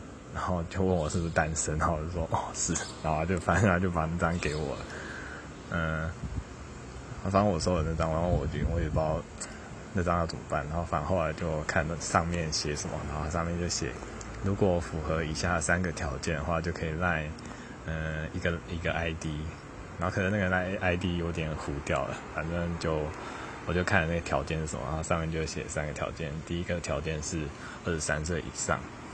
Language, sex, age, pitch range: English, male, 20-39, 75-90 Hz